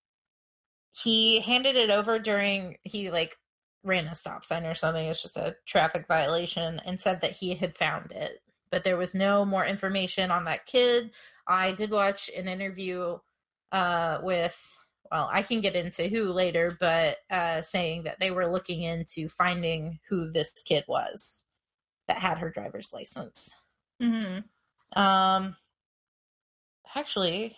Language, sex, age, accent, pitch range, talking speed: English, female, 20-39, American, 170-205 Hz, 150 wpm